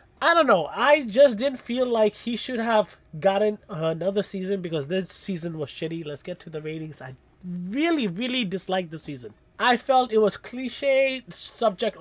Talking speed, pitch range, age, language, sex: 180 wpm, 170-225 Hz, 20-39, English, male